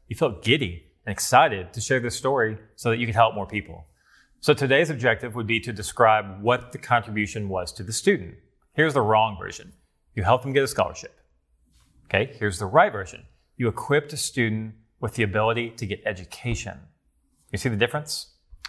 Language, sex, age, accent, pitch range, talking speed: English, male, 30-49, American, 100-135 Hz, 190 wpm